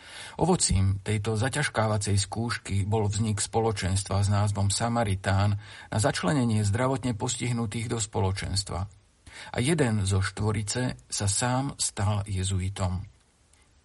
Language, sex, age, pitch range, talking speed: Slovak, male, 50-69, 100-120 Hz, 105 wpm